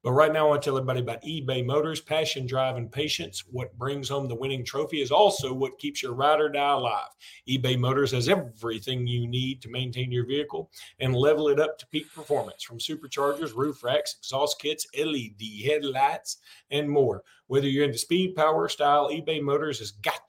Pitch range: 125-155 Hz